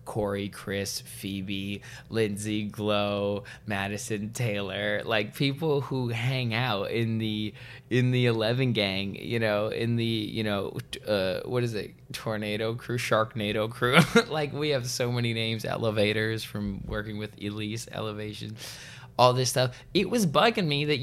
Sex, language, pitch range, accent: male, English, 105-135 Hz, American